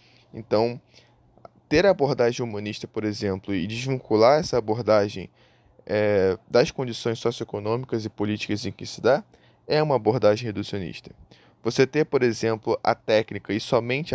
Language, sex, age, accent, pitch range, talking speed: Portuguese, male, 10-29, Brazilian, 110-135 Hz, 135 wpm